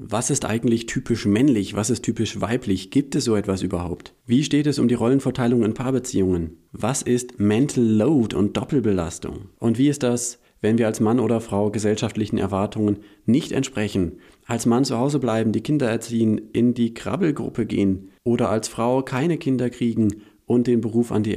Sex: male